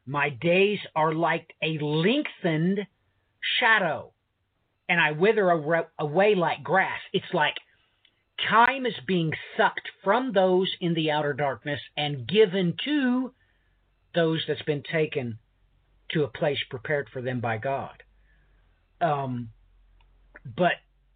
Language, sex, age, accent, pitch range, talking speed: English, male, 50-69, American, 135-195 Hz, 120 wpm